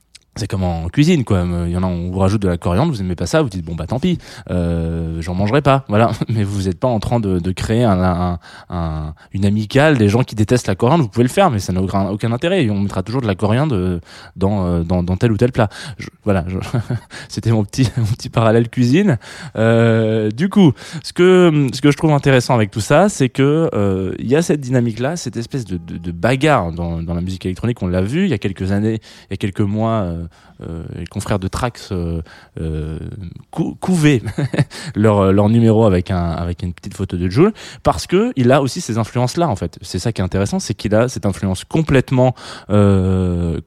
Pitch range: 90-125 Hz